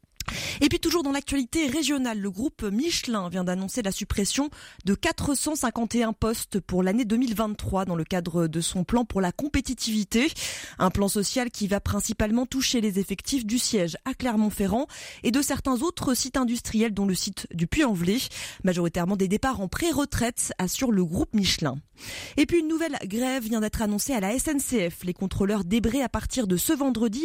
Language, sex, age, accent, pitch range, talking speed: French, female, 20-39, French, 195-265 Hz, 175 wpm